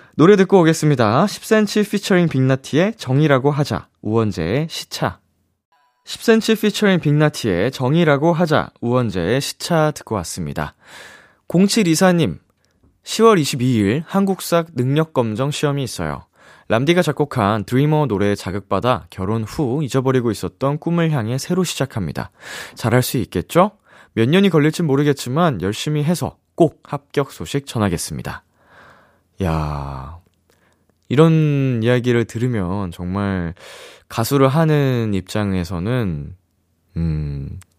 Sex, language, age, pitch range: male, Korean, 20-39, 95-150 Hz